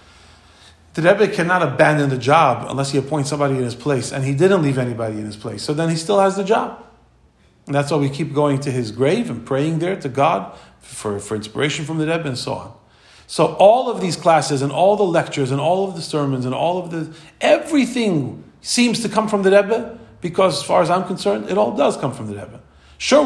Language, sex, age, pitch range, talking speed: English, male, 40-59, 115-160 Hz, 230 wpm